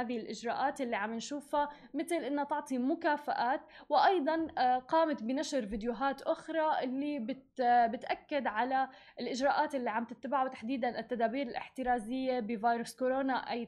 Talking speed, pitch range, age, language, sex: 120 wpm, 245-310 Hz, 10-29, Arabic, female